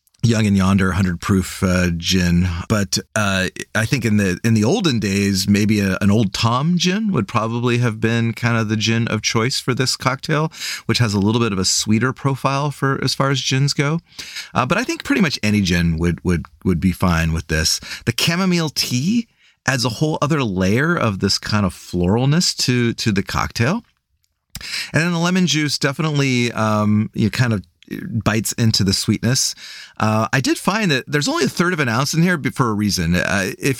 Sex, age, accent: male, 30-49, American